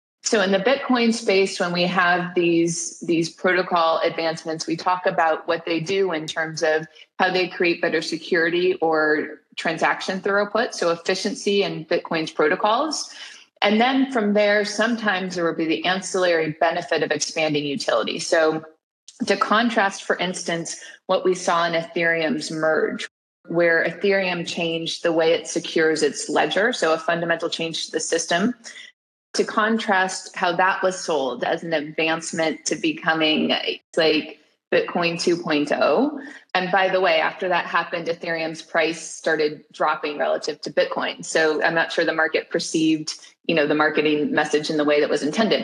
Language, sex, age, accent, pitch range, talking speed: English, female, 30-49, American, 165-200 Hz, 155 wpm